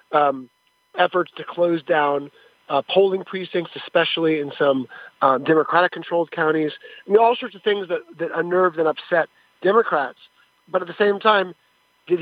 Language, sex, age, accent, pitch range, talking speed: English, male, 40-59, American, 150-180 Hz, 155 wpm